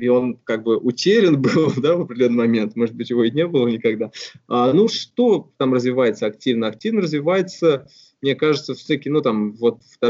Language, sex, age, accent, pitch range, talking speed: Russian, male, 20-39, native, 115-150 Hz, 190 wpm